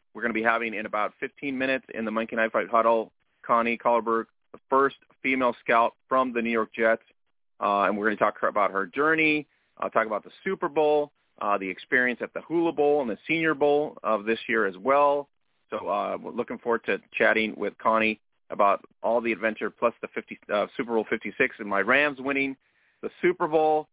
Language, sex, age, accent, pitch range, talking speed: English, male, 30-49, American, 110-135 Hz, 210 wpm